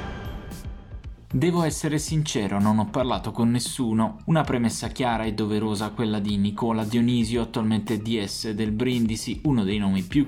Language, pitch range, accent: Italian, 105-130 Hz, native